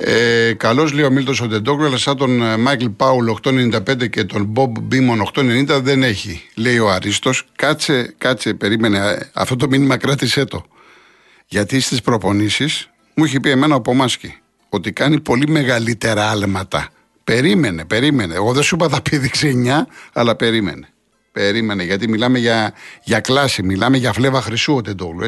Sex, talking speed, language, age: male, 160 wpm, Greek, 50-69